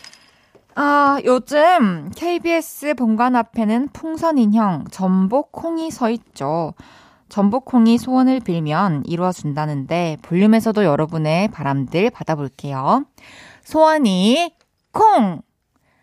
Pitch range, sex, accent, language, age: 170-260 Hz, female, native, Korean, 20-39